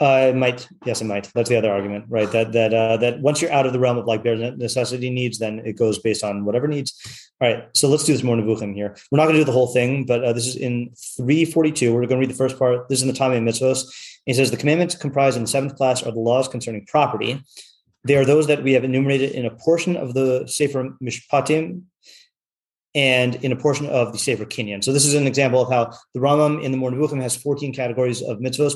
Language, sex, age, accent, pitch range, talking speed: English, male, 30-49, American, 120-140 Hz, 255 wpm